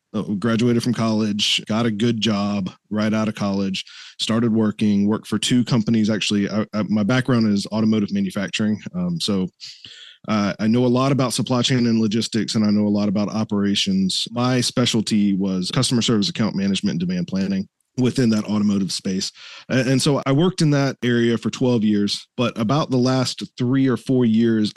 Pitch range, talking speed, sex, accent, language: 105-130 Hz, 180 wpm, male, American, English